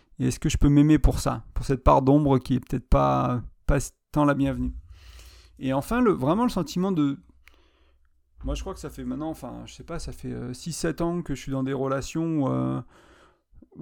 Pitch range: 125-155 Hz